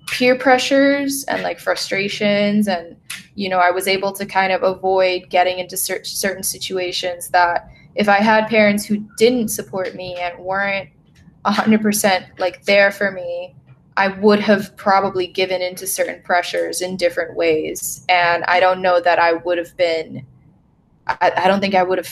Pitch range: 175-210 Hz